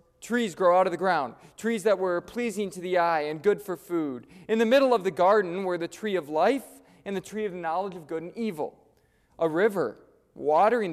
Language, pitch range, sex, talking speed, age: English, 155-210 Hz, male, 225 wpm, 20-39